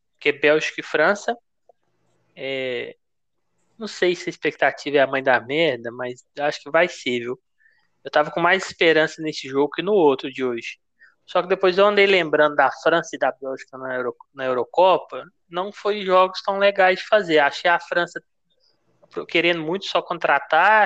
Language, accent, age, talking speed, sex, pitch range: Portuguese, Brazilian, 20-39, 175 wpm, male, 140-180 Hz